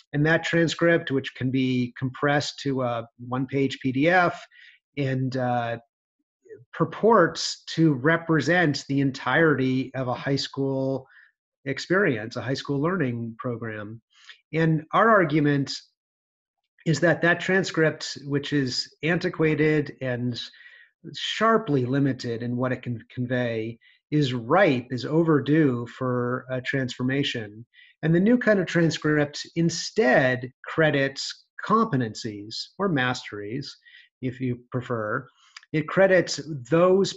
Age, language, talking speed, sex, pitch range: 30-49, English, 115 wpm, male, 125-160 Hz